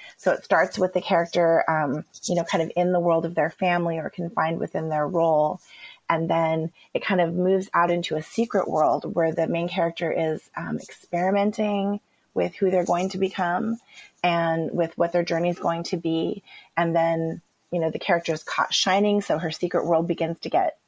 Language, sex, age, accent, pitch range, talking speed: English, female, 30-49, American, 165-195 Hz, 205 wpm